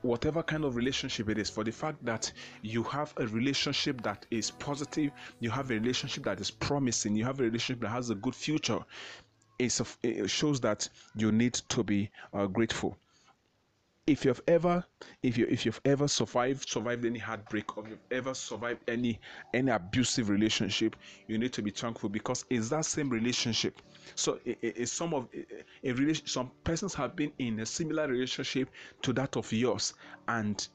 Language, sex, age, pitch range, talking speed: English, male, 30-49, 110-135 Hz, 185 wpm